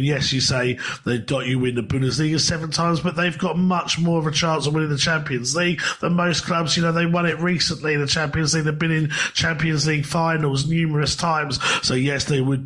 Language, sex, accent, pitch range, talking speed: English, male, British, 140-165 Hz, 235 wpm